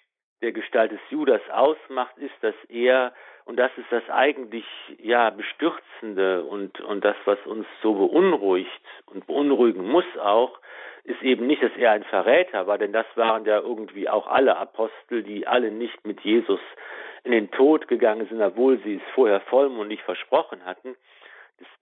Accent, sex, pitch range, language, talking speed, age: German, male, 115-150 Hz, German, 165 wpm, 50-69